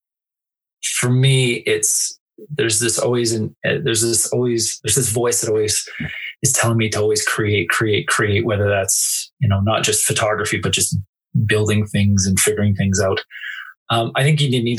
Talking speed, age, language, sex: 175 wpm, 20-39, English, male